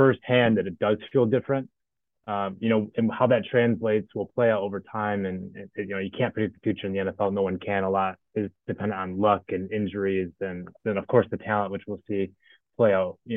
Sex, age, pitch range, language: male, 20-39, 100-115 Hz, English